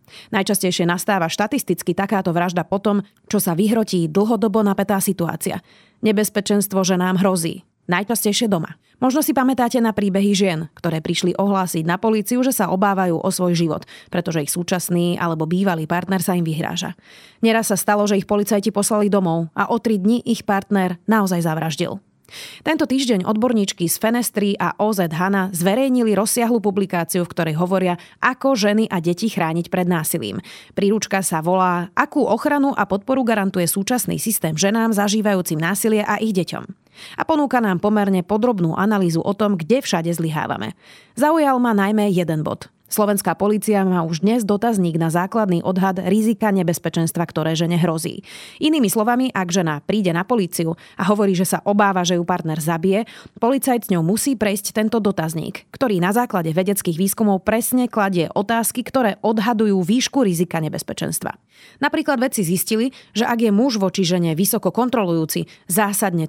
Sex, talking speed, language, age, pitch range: female, 160 wpm, Slovak, 30-49, 175-220 Hz